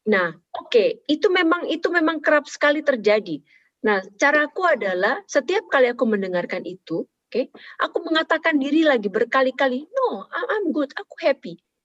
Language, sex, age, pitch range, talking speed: Indonesian, female, 30-49, 200-290 Hz, 150 wpm